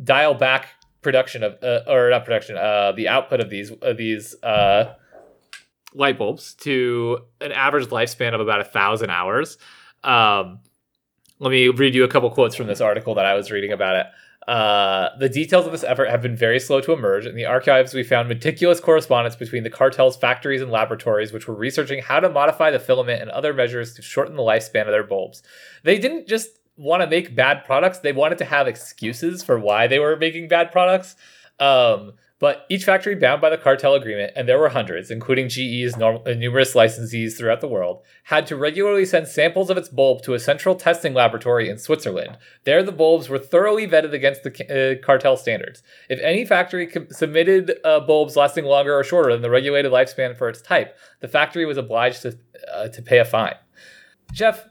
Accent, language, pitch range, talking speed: American, English, 120-170 Hz, 200 wpm